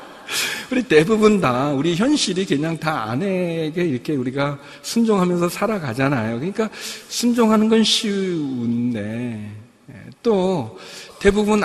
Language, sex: Korean, male